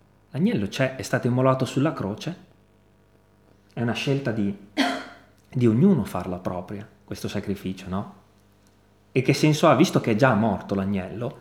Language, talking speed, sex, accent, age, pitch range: Italian, 145 wpm, male, native, 30-49, 105-140 Hz